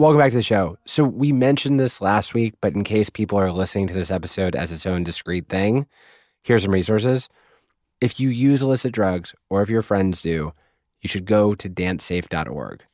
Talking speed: 200 wpm